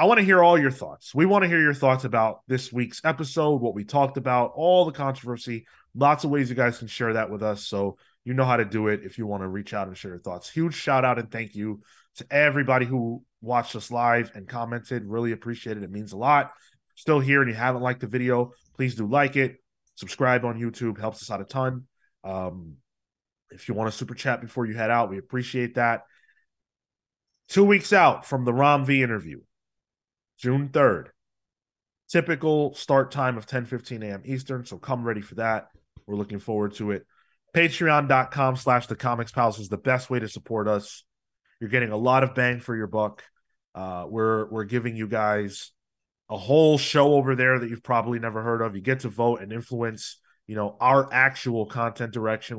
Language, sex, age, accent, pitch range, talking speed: English, male, 20-39, American, 110-130 Hz, 205 wpm